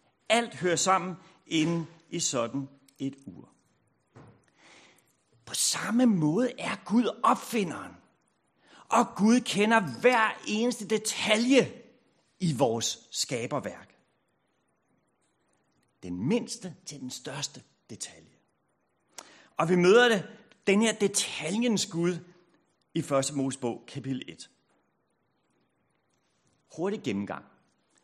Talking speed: 95 wpm